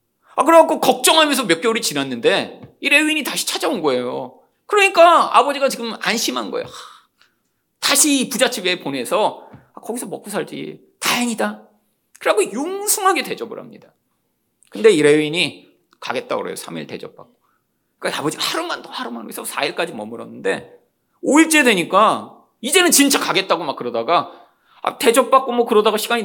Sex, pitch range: male, 215-340 Hz